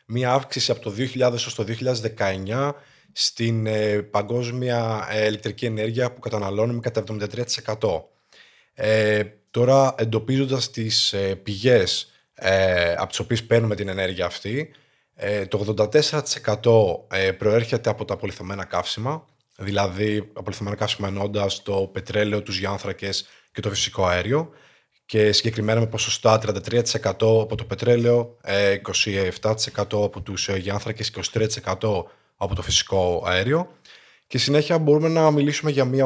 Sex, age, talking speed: male, 20-39, 125 wpm